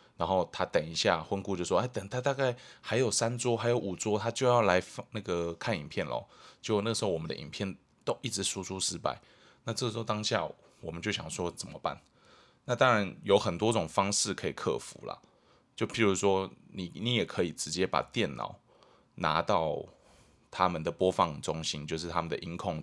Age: 20-39